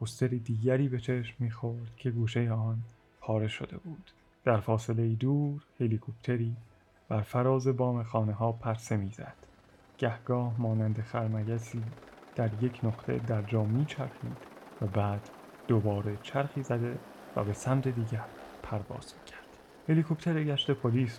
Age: 30-49